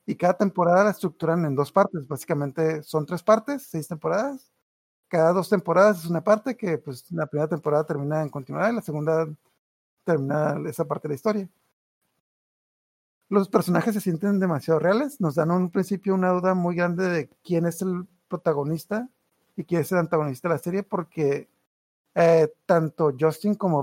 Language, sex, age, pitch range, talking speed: Spanish, male, 50-69, 155-190 Hz, 175 wpm